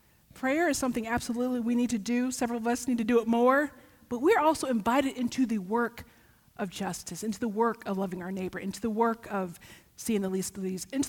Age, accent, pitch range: 40-59, American, 195-250 Hz